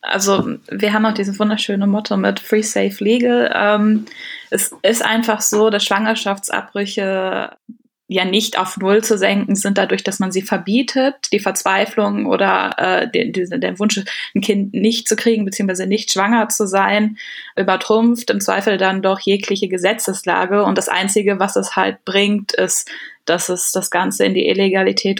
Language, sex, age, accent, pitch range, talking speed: German, female, 20-39, German, 190-215 Hz, 165 wpm